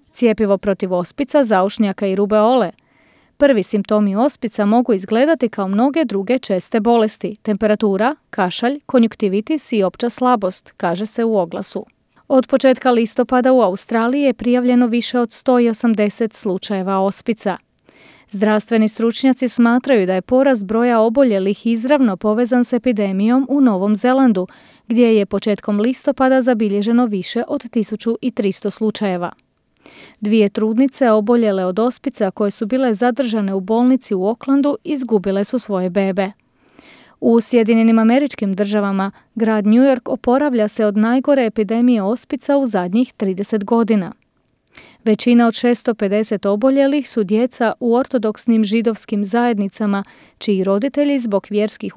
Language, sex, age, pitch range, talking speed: Croatian, female, 30-49, 205-250 Hz, 130 wpm